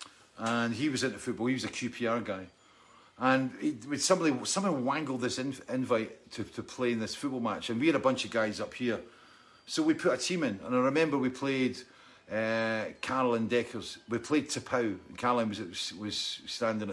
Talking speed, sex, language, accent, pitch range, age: 200 wpm, male, English, British, 105-140 Hz, 50-69